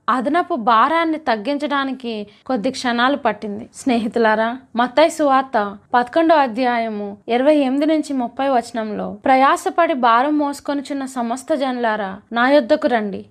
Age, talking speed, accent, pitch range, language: 20-39, 105 wpm, native, 235-295 Hz, Telugu